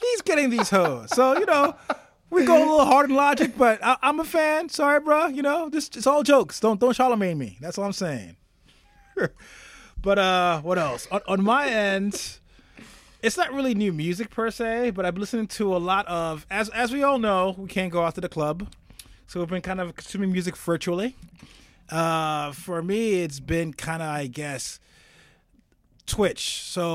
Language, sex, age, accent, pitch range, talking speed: English, male, 20-39, American, 150-205 Hz, 200 wpm